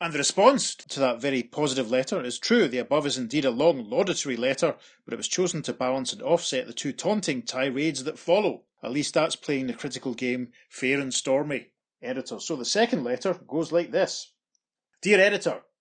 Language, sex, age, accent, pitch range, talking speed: English, male, 30-49, British, 130-180 Hz, 195 wpm